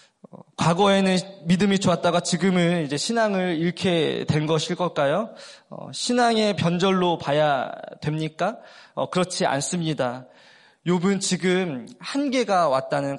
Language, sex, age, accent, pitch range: Korean, male, 20-39, native, 155-200 Hz